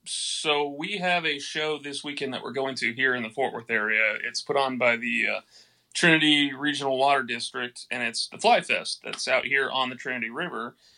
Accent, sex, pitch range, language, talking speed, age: American, male, 130-150 Hz, English, 215 wpm, 30-49